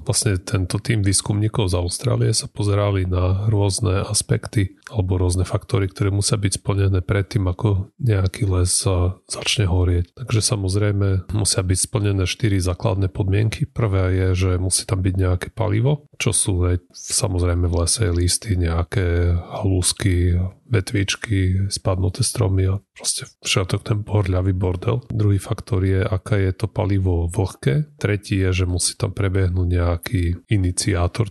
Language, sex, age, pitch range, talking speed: Slovak, male, 30-49, 90-110 Hz, 140 wpm